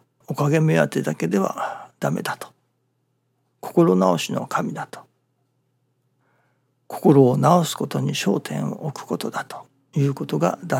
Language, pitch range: Japanese, 130-165 Hz